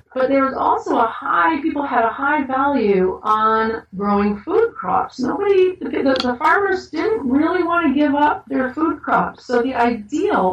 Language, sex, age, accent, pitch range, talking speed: English, female, 40-59, American, 185-235 Hz, 175 wpm